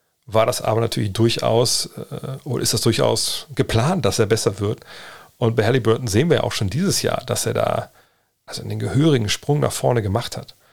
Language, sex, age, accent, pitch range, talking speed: German, male, 40-59, German, 110-130 Hz, 200 wpm